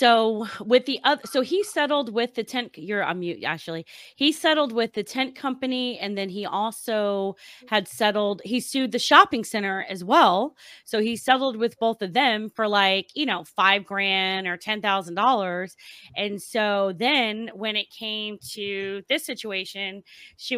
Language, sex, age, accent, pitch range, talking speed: English, female, 30-49, American, 190-235 Hz, 170 wpm